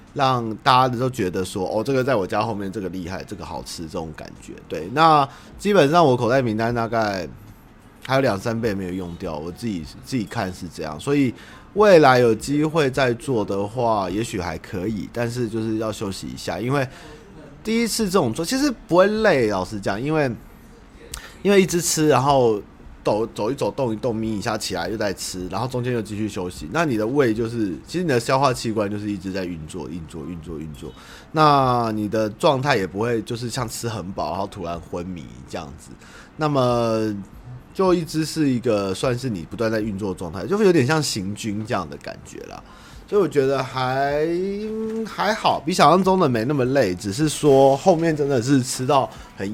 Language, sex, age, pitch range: Chinese, male, 30-49, 100-140 Hz